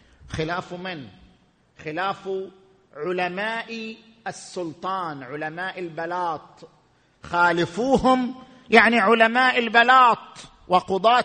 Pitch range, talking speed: 190-265 Hz, 65 wpm